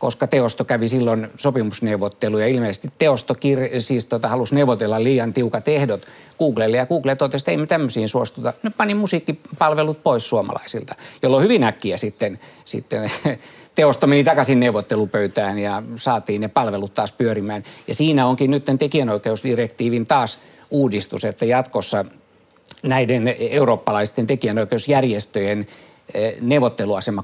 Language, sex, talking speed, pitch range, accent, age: Finnish, male, 125 wpm, 110-135 Hz, native, 60-79